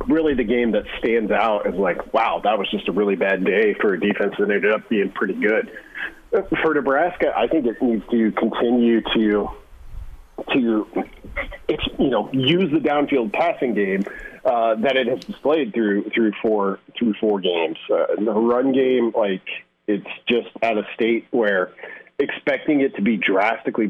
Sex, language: male, English